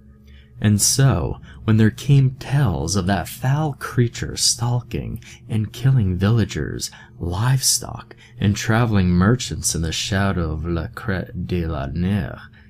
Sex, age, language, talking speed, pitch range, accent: male, 20-39, English, 130 wpm, 85-115 Hz, American